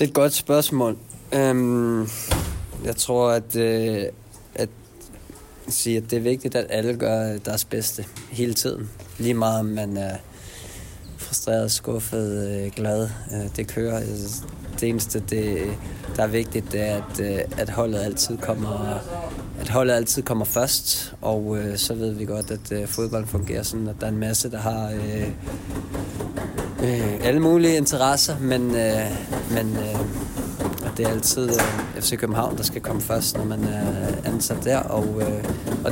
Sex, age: male, 20-39